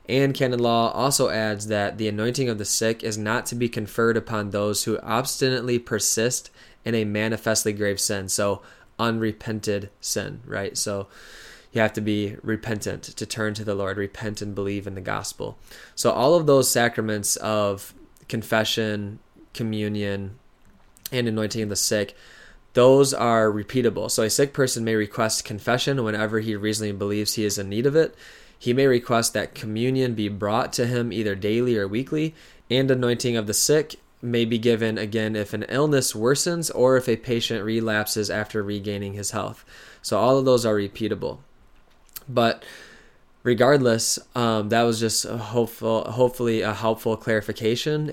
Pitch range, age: 105-120 Hz, 20-39